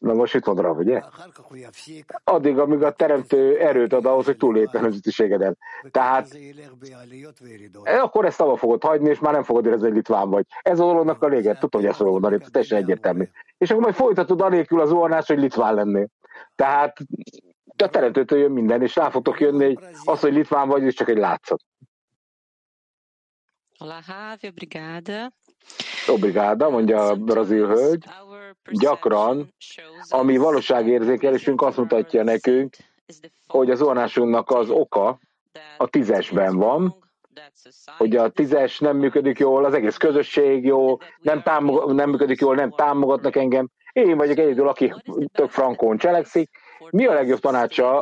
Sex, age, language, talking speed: male, 60-79, English, 145 wpm